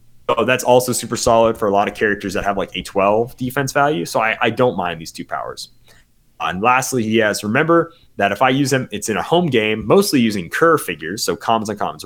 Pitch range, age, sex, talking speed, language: 100-140 Hz, 30-49, male, 240 wpm, English